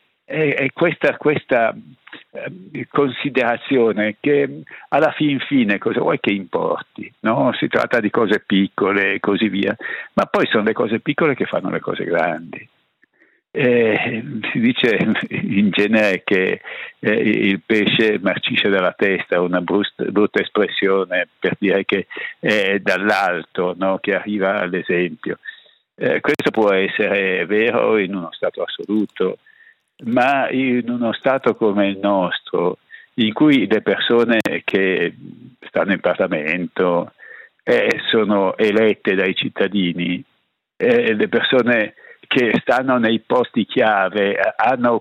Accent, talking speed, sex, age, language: native, 125 wpm, male, 60-79, Italian